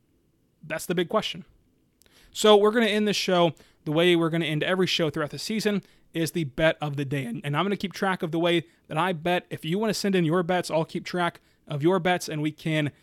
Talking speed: 265 wpm